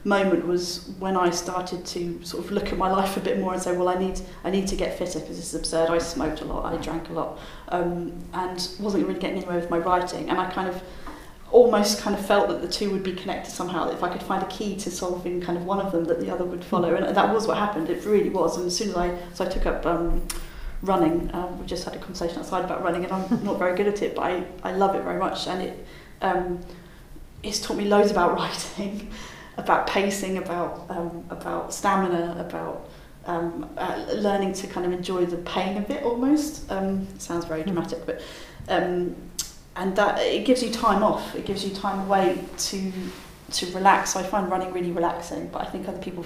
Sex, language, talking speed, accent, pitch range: female, English, 235 wpm, British, 170-195 Hz